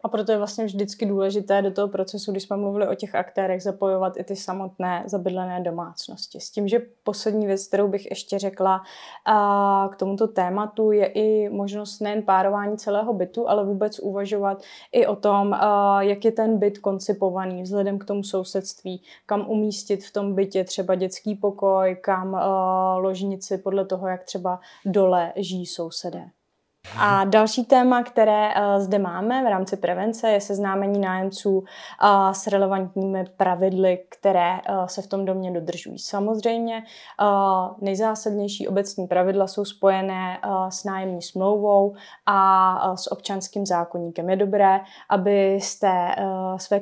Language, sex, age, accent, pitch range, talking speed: Czech, female, 20-39, native, 190-210 Hz, 140 wpm